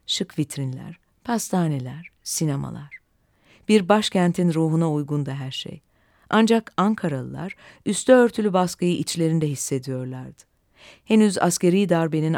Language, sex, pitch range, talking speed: Turkish, female, 145-195 Hz, 100 wpm